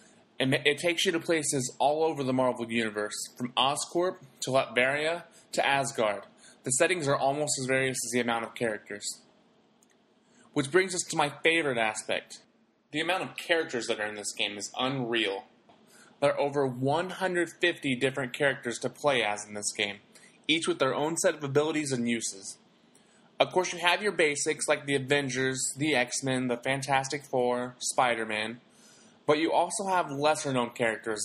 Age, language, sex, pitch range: 20-39, English, male, 120-170 Hz